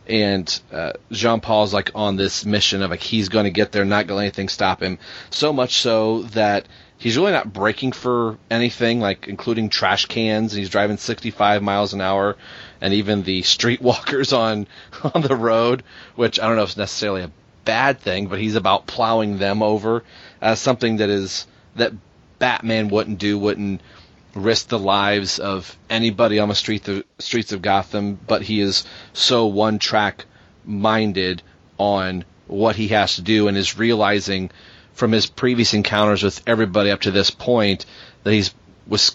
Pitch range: 100-115 Hz